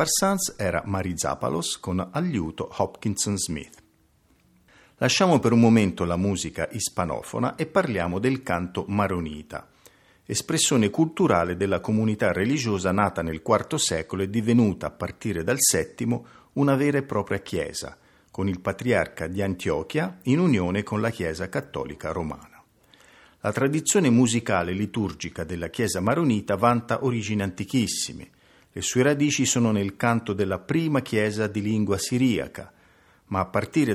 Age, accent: 50-69, native